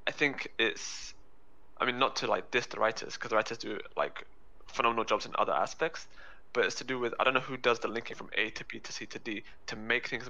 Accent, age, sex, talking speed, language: British, 20-39, male, 255 wpm, English